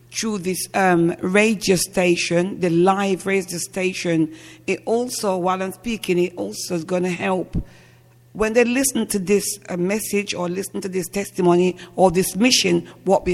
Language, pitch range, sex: English, 180-220 Hz, female